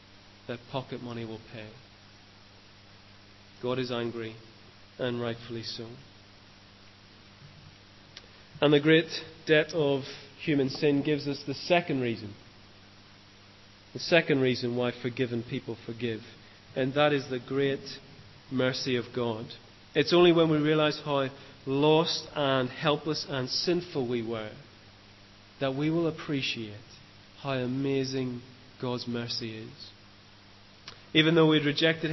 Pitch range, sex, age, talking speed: 100-140 Hz, male, 30-49, 120 wpm